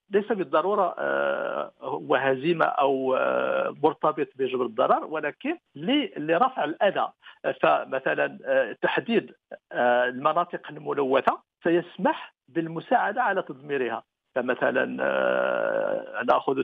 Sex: male